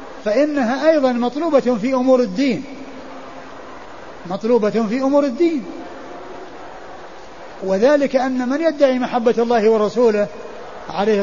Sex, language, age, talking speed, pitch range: male, Arabic, 50-69, 95 wpm, 215-265 Hz